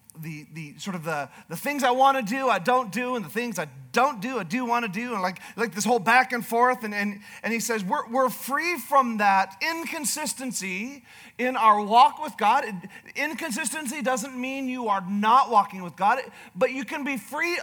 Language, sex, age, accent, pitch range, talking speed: English, male, 40-59, American, 195-255 Hz, 215 wpm